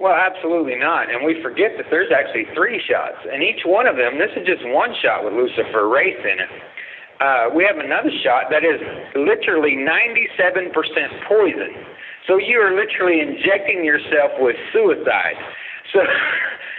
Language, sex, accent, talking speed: English, male, American, 160 wpm